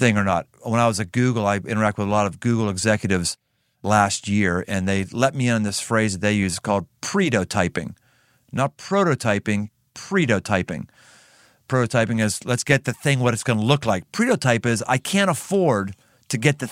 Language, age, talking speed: English, 50-69, 195 wpm